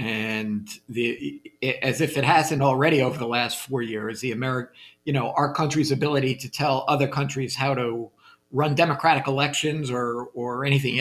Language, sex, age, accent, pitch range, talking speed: English, male, 50-69, American, 115-145 Hz, 165 wpm